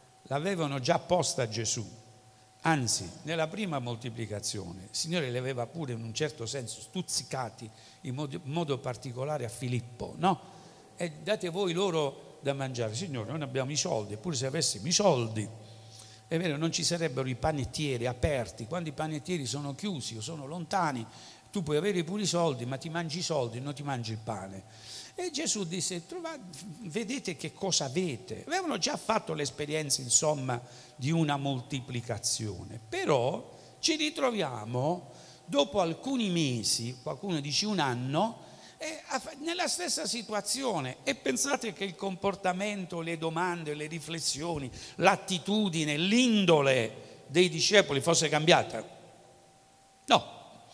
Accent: native